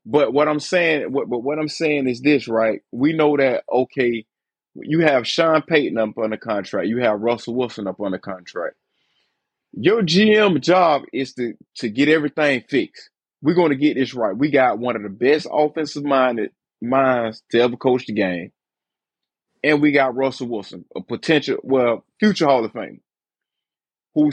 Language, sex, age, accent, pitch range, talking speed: English, male, 30-49, American, 125-170 Hz, 180 wpm